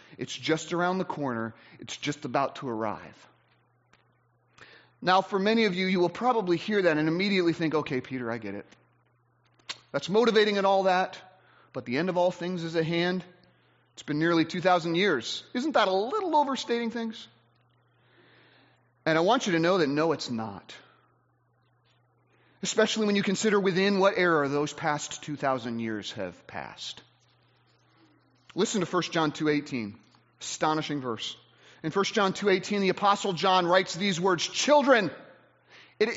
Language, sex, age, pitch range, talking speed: English, male, 30-49, 155-250 Hz, 160 wpm